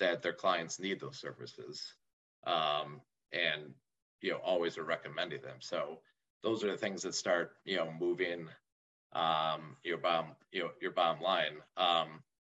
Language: English